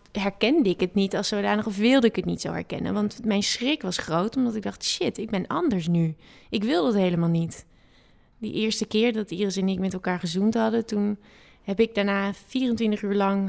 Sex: female